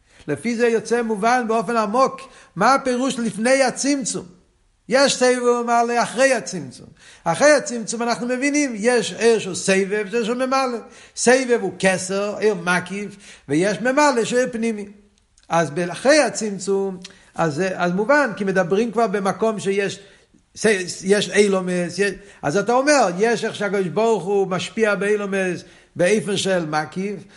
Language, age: Hebrew, 50-69